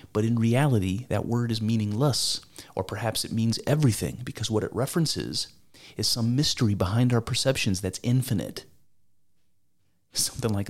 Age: 30-49